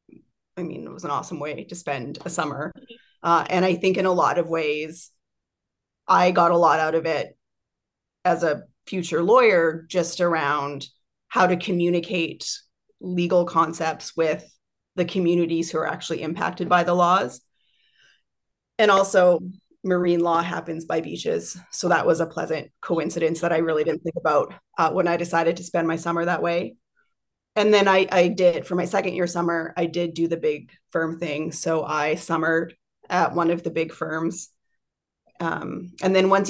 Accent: American